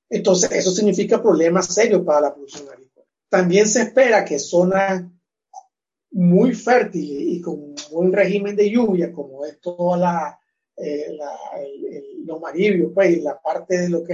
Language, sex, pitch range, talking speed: Spanish, male, 160-200 Hz, 160 wpm